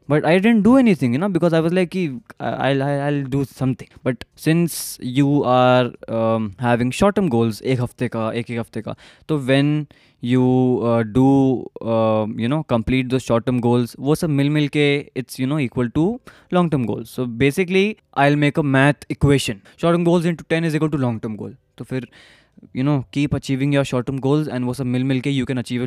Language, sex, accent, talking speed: Hindi, male, native, 220 wpm